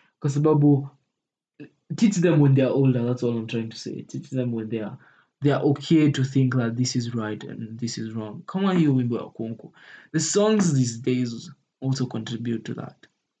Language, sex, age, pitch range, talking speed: English, male, 20-39, 125-145 Hz, 185 wpm